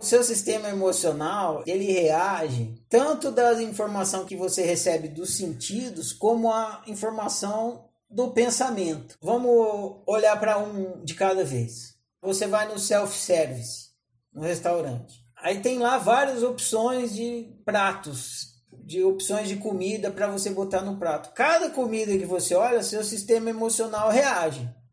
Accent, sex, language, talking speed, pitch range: Brazilian, male, Portuguese, 135 wpm, 160-225 Hz